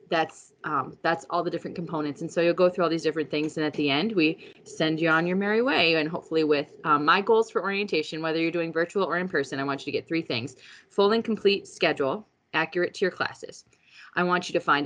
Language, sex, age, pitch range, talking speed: English, female, 20-39, 155-205 Hz, 250 wpm